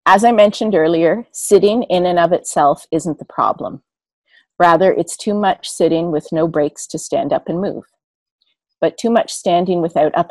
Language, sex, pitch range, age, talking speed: English, female, 155-190 Hz, 40-59, 180 wpm